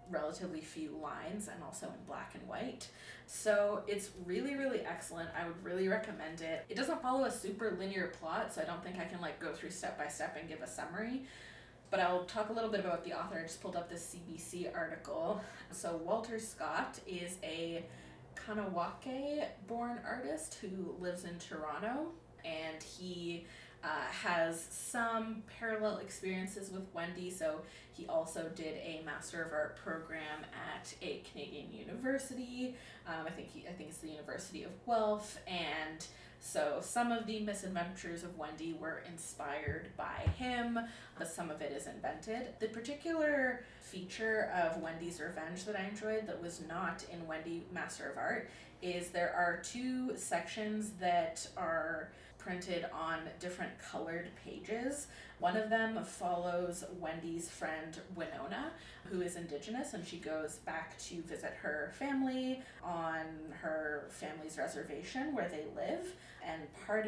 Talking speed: 155 wpm